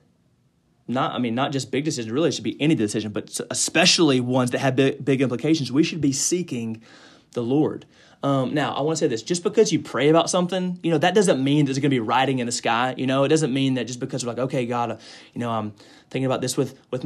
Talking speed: 260 wpm